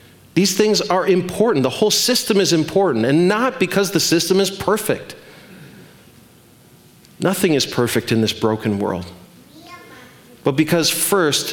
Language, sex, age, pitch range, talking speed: English, male, 40-59, 135-190 Hz, 135 wpm